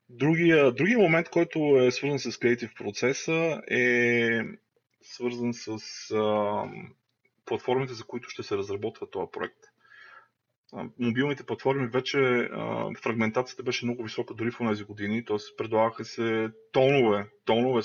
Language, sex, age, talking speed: Bulgarian, male, 20-39, 130 wpm